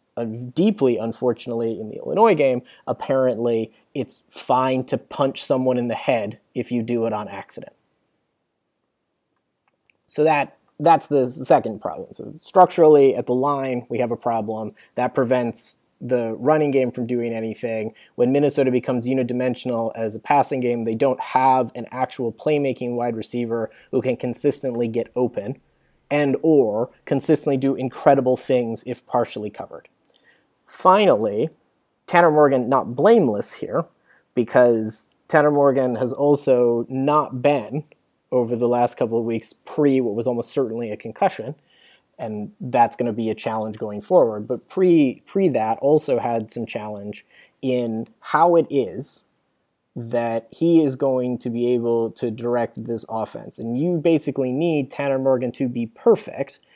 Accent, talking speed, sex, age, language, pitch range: American, 150 wpm, male, 30-49, English, 115-140 Hz